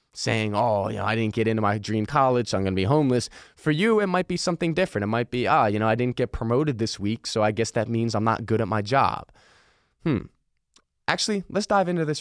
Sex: male